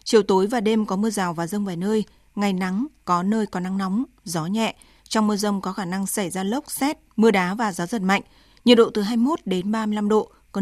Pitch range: 195-230 Hz